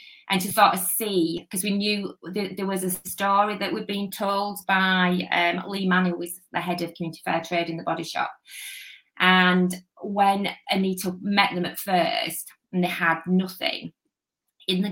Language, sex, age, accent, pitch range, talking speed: English, female, 20-39, British, 175-200 Hz, 185 wpm